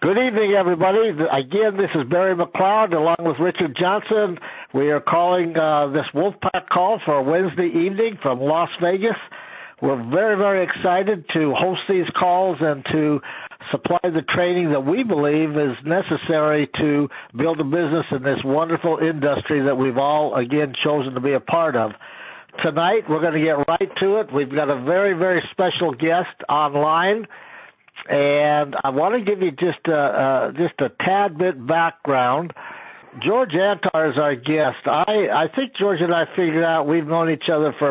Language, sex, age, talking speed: English, male, 60-79, 175 wpm